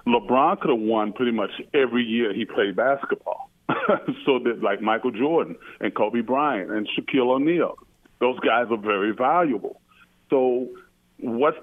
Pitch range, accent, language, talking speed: 120-165 Hz, American, English, 145 wpm